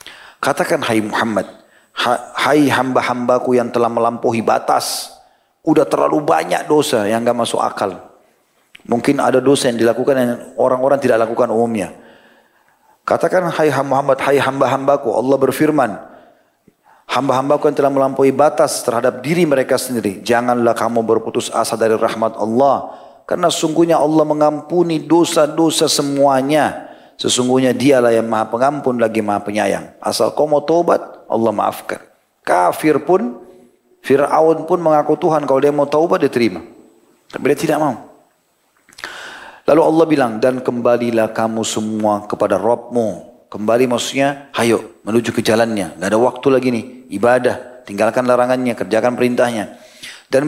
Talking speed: 130 wpm